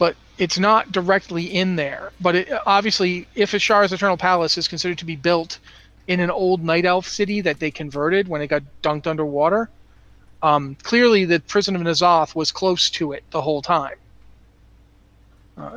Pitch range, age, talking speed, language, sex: 150-190 Hz, 40-59, 175 wpm, English, male